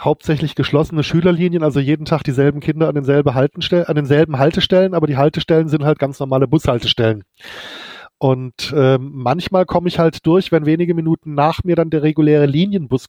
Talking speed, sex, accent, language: 160 wpm, male, German, English